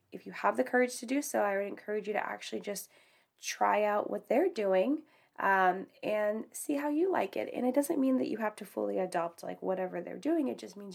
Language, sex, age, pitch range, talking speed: English, female, 10-29, 200-265 Hz, 240 wpm